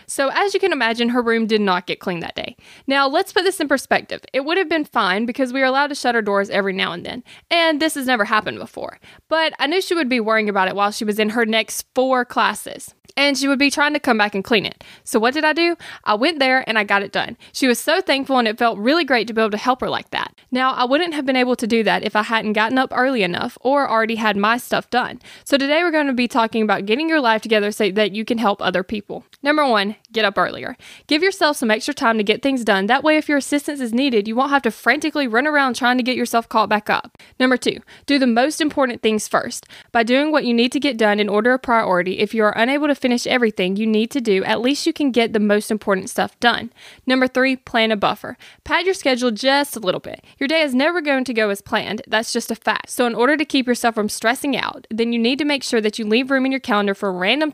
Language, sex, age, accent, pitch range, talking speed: English, female, 20-39, American, 215-280 Hz, 275 wpm